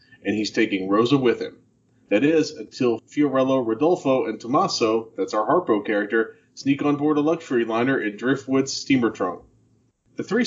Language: English